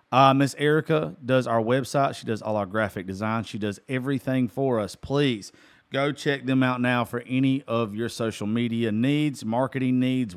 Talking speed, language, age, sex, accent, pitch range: 185 wpm, English, 40-59, male, American, 115-150 Hz